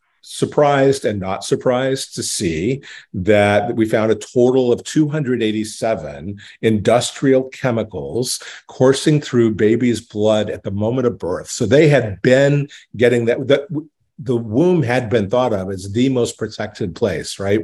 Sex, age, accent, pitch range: male, 50-69, American, 100-125 Hz